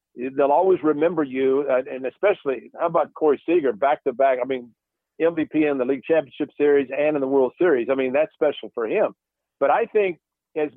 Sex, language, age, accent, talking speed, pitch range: male, English, 50-69, American, 200 wpm, 135-170 Hz